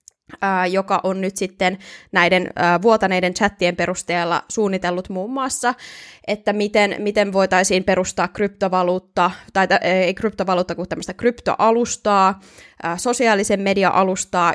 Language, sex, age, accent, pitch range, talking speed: Finnish, female, 20-39, native, 180-210 Hz, 125 wpm